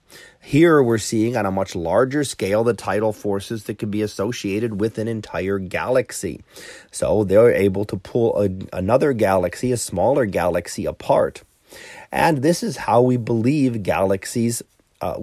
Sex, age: male, 30-49